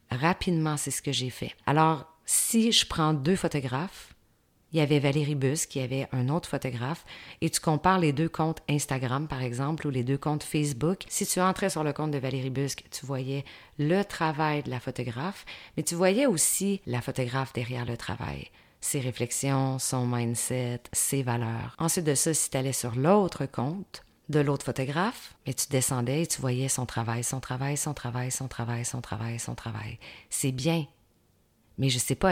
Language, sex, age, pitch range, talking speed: French, female, 30-49, 125-165 Hz, 195 wpm